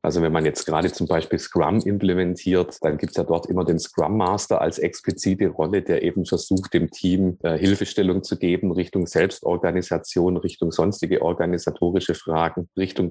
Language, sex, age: German, male, 30-49